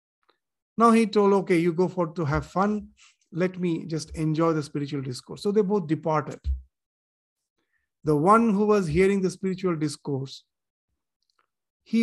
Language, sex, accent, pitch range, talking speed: English, male, Indian, 155-195 Hz, 145 wpm